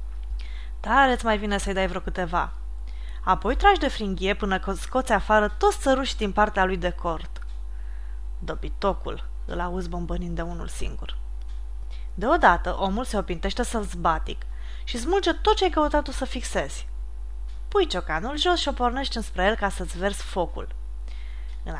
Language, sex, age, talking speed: Romanian, female, 20-39, 145 wpm